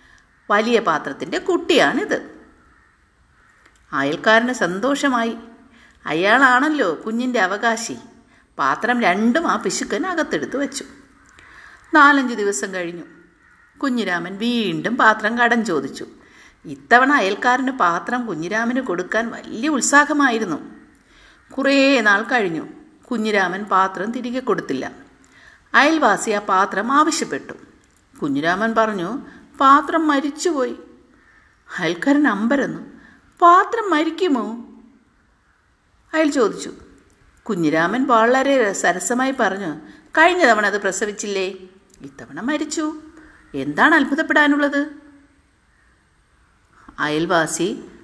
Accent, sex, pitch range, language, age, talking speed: native, female, 195-285 Hz, Malayalam, 50-69, 75 wpm